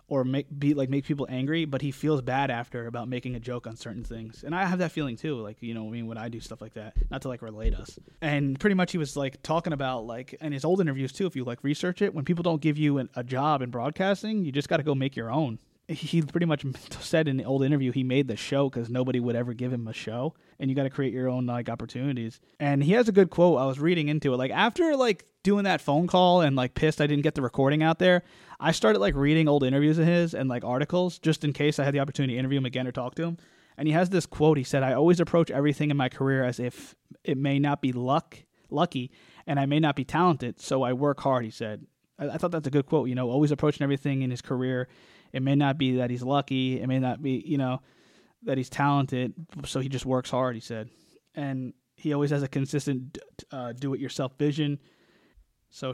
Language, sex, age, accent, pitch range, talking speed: English, male, 20-39, American, 125-150 Hz, 255 wpm